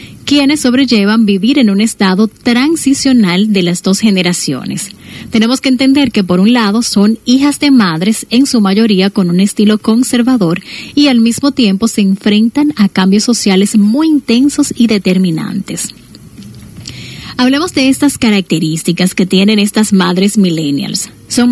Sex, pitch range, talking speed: female, 190-245 Hz, 145 wpm